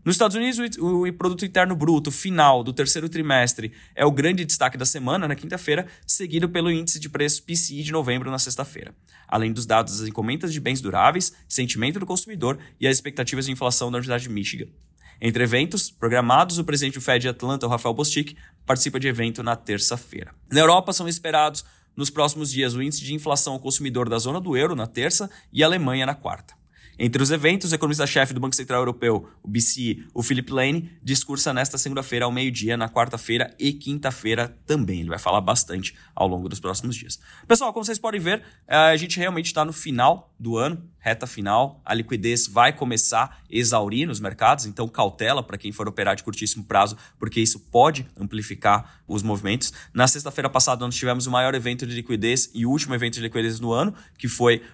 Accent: Brazilian